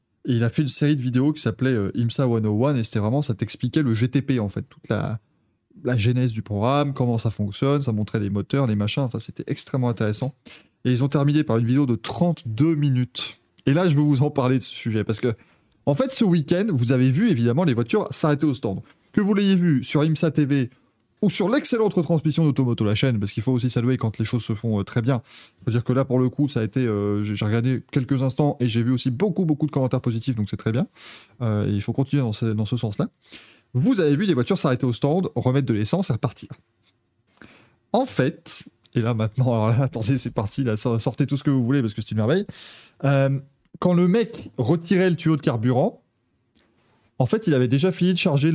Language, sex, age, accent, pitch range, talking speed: French, male, 20-39, French, 115-145 Hz, 235 wpm